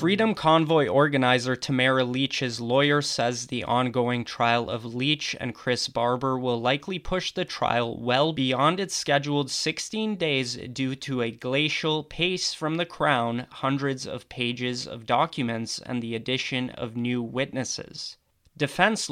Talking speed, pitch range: 145 wpm, 120-145 Hz